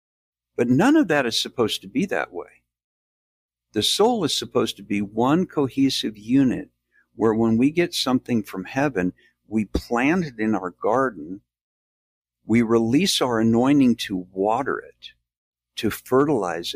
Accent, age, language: American, 60-79, English